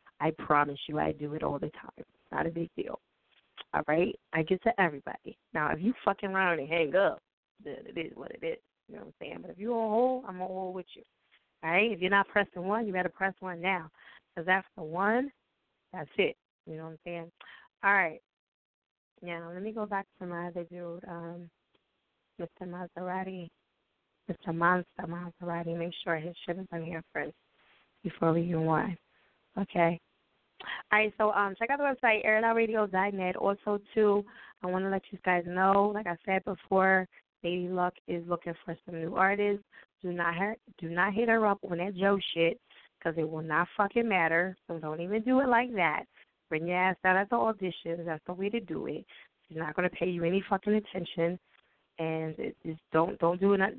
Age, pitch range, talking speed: 20-39, 170-200 Hz, 205 wpm